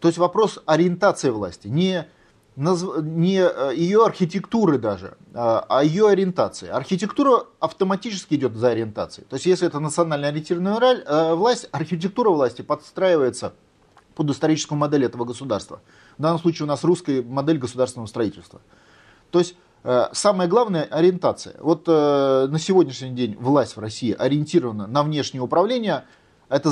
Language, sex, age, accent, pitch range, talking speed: Russian, male, 30-49, native, 130-180 Hz, 135 wpm